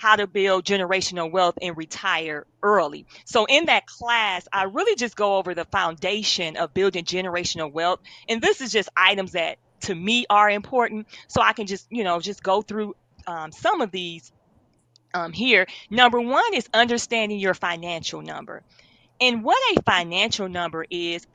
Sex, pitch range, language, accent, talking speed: female, 185-245 Hz, English, American, 170 wpm